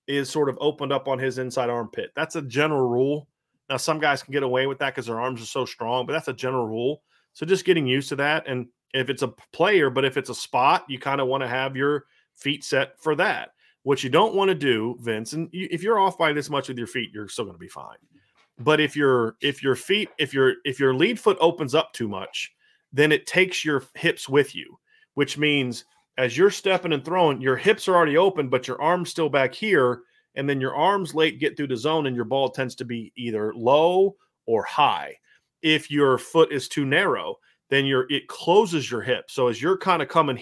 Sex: male